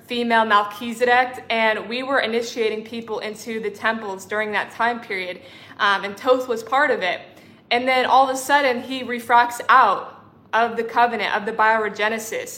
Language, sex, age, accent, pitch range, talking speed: English, female, 20-39, American, 210-240 Hz, 170 wpm